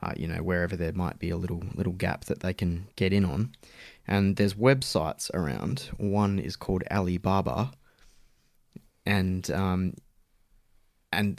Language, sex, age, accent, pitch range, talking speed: English, male, 20-39, Australian, 90-100 Hz, 150 wpm